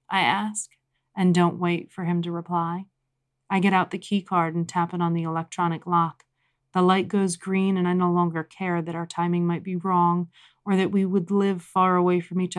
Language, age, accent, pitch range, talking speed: English, 30-49, American, 170-190 Hz, 215 wpm